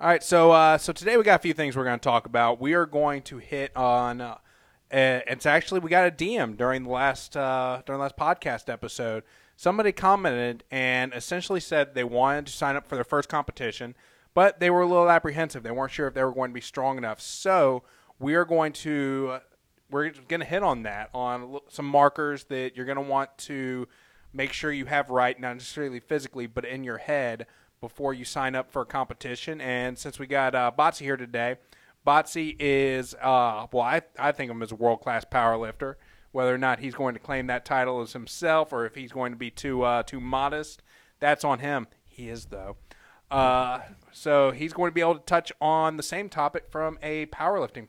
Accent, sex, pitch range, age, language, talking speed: American, male, 125-155 Hz, 20-39, English, 220 wpm